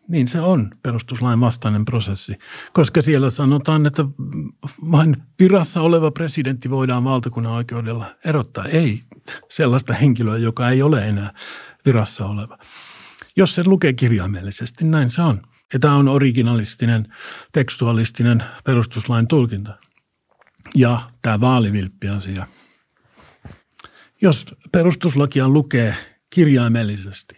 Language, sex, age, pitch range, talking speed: Finnish, male, 50-69, 115-145 Hz, 110 wpm